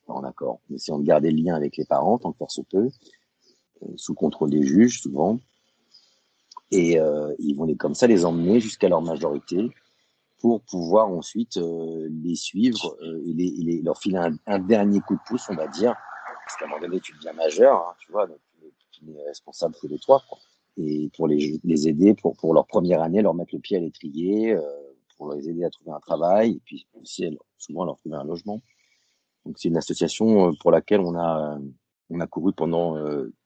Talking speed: 210 wpm